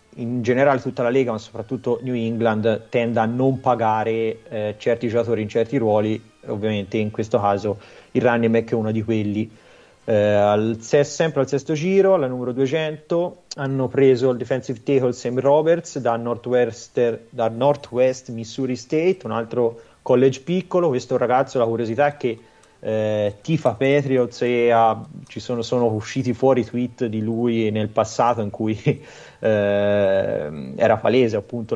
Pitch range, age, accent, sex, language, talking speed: 110-130 Hz, 30-49, native, male, Italian, 155 wpm